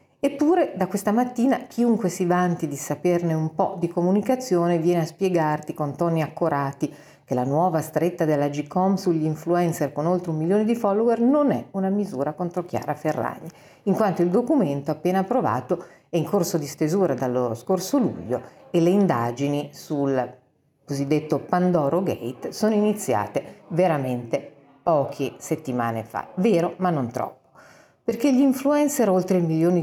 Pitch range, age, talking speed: 145-185 Hz, 50-69, 155 wpm